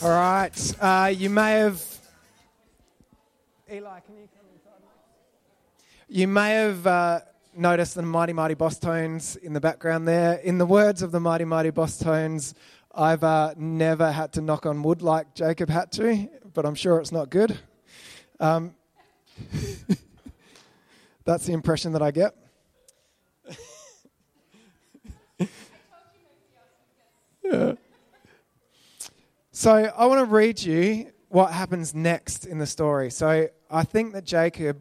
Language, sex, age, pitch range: English, male, 20-39, 145-185 Hz